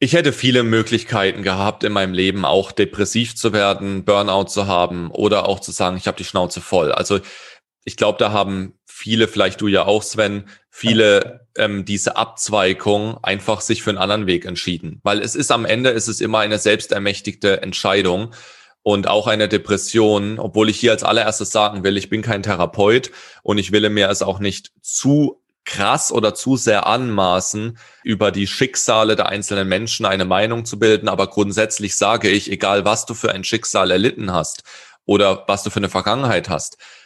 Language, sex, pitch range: German, male, 100-120 Hz